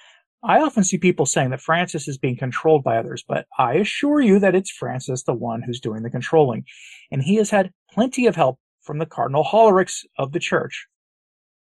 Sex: male